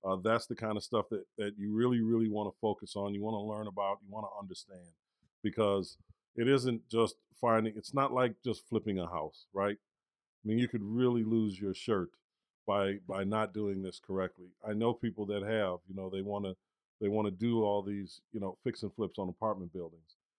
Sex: male